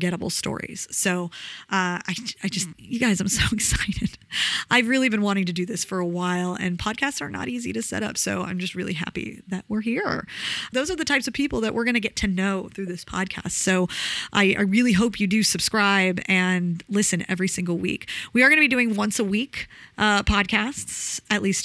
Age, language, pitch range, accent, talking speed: 30-49, English, 185-235 Hz, American, 220 wpm